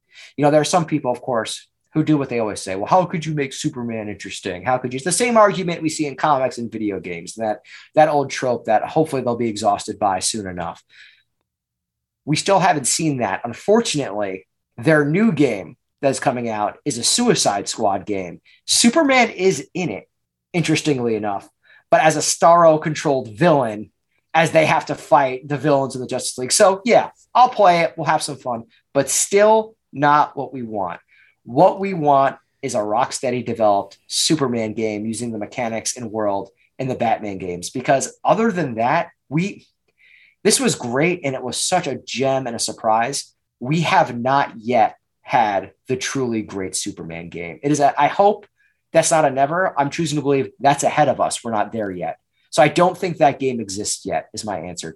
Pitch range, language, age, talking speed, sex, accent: 110-160 Hz, English, 30-49, 195 wpm, male, American